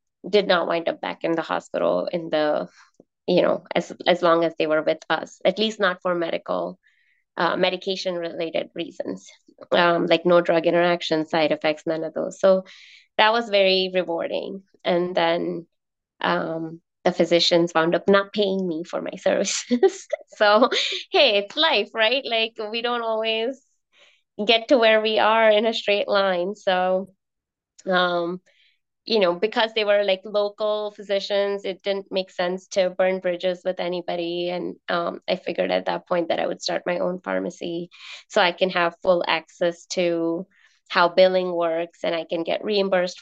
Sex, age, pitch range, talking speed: female, 20-39, 170-210 Hz, 170 wpm